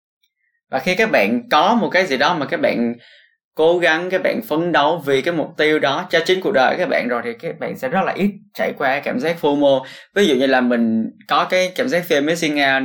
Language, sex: Vietnamese, male